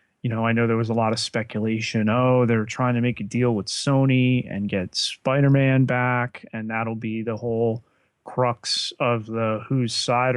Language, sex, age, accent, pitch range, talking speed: English, male, 30-49, American, 110-125 Hz, 190 wpm